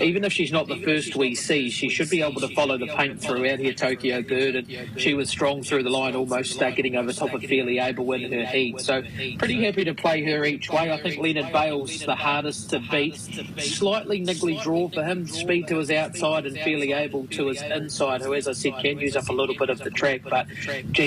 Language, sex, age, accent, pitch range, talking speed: English, male, 30-49, Australian, 130-155 Hz, 240 wpm